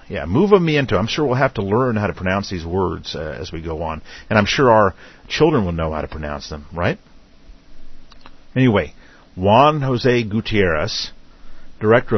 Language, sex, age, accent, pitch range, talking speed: English, male, 50-69, American, 90-125 Hz, 170 wpm